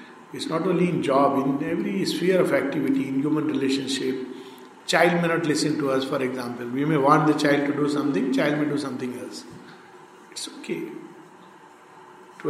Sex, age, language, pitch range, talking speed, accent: male, 50-69, English, 150-215 Hz, 180 wpm, Indian